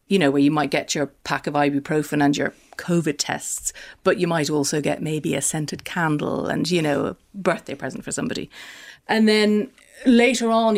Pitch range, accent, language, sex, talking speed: 150-180 Hz, British, English, female, 195 wpm